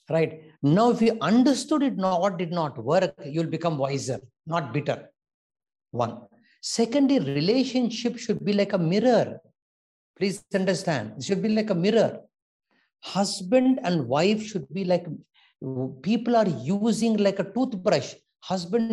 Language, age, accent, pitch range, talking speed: English, 60-79, Indian, 160-220 Hz, 145 wpm